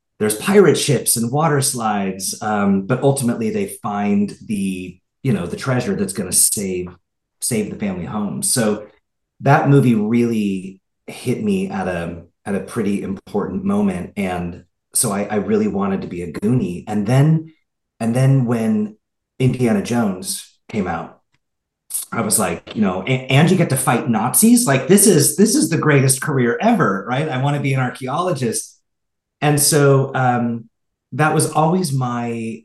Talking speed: 165 wpm